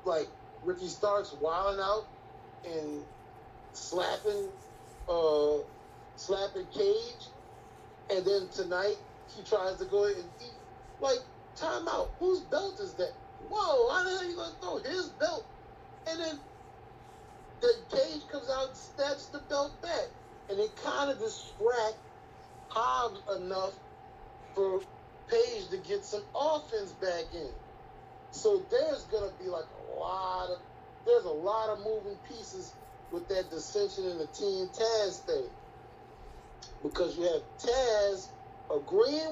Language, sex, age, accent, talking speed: English, male, 30-49, American, 135 wpm